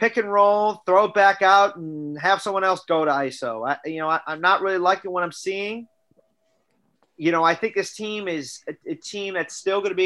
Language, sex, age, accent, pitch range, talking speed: English, male, 30-49, American, 150-185 Hz, 240 wpm